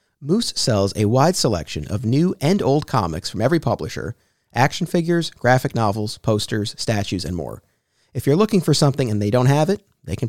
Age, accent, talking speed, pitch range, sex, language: 40-59, American, 190 wpm, 110-155 Hz, male, English